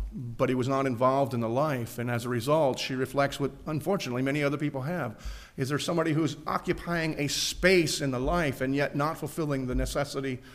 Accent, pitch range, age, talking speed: American, 120-165 Hz, 50-69, 205 wpm